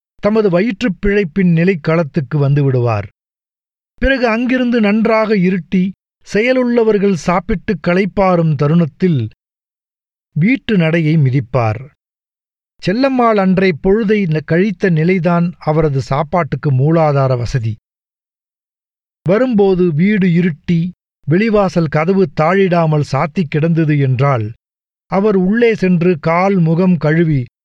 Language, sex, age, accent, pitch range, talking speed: Tamil, male, 50-69, native, 150-205 Hz, 85 wpm